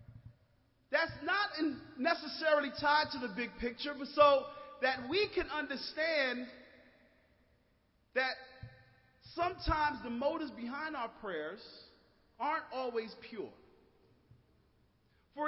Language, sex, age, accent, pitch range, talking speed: English, male, 40-59, American, 240-305 Hz, 95 wpm